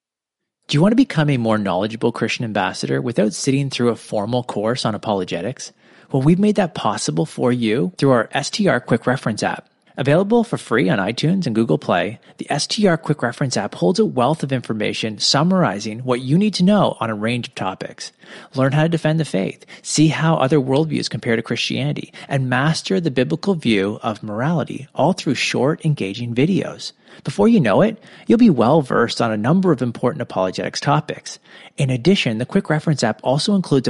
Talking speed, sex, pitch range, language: 190 wpm, male, 120-170 Hz, English